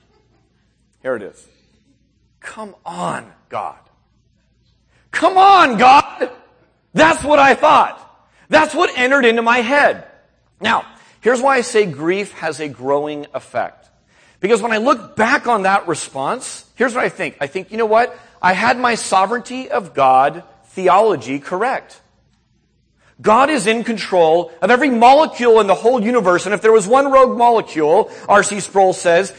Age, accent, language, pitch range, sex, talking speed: 40-59, American, English, 180-265 Hz, male, 155 wpm